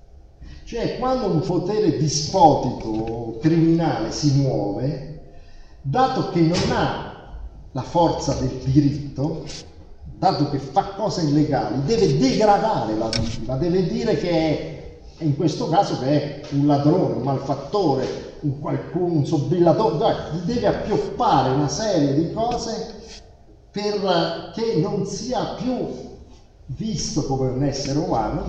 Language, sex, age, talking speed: Italian, male, 50-69, 125 wpm